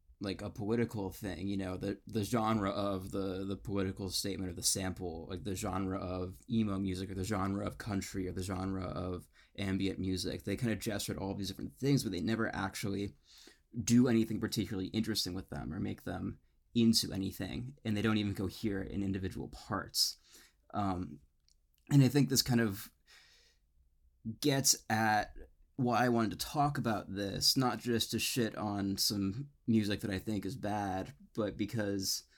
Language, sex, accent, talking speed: English, male, American, 180 wpm